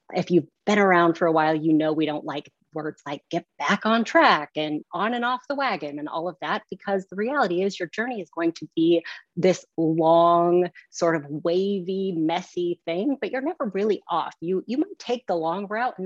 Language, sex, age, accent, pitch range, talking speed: English, female, 30-49, American, 165-230 Hz, 215 wpm